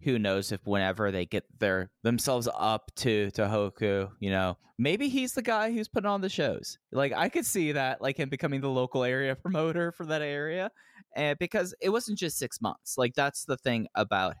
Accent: American